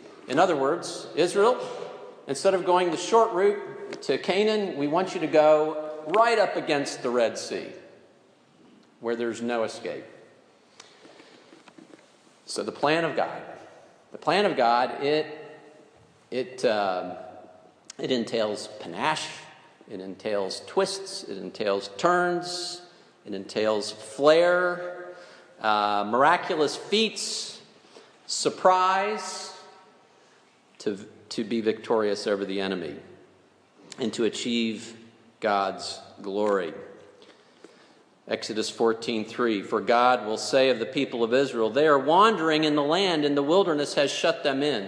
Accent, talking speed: American, 125 wpm